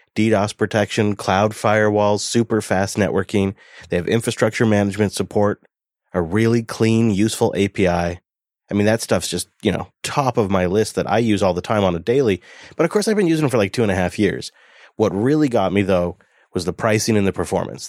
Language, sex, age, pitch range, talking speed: English, male, 30-49, 95-115 Hz, 210 wpm